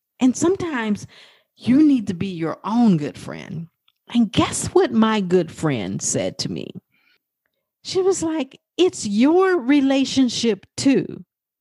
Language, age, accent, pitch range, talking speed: English, 40-59, American, 200-290 Hz, 135 wpm